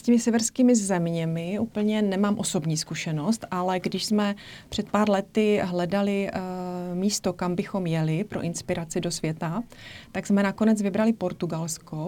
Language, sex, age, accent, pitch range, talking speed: Czech, female, 30-49, native, 180-205 Hz, 140 wpm